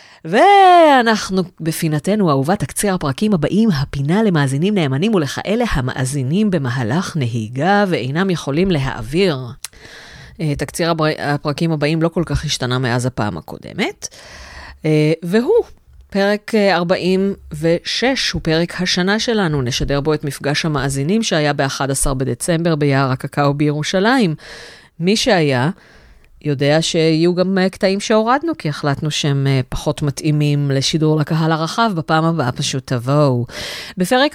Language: Hebrew